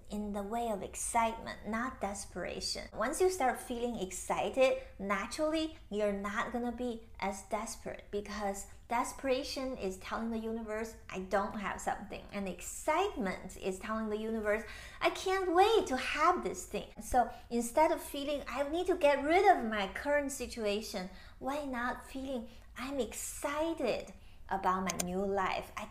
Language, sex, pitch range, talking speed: English, female, 200-260 Hz, 155 wpm